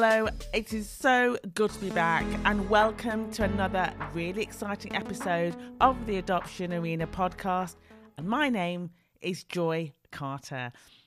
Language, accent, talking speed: English, British, 140 wpm